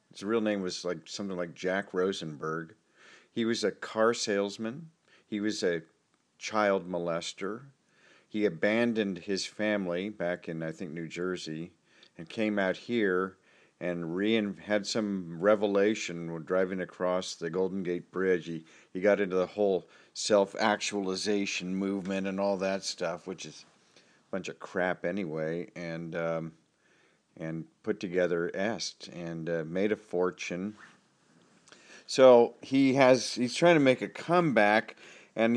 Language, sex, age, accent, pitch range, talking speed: English, male, 50-69, American, 90-115 Hz, 140 wpm